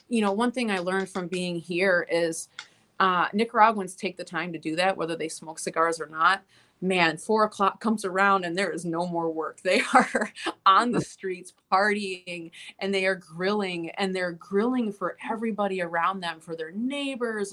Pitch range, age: 175-230 Hz, 30-49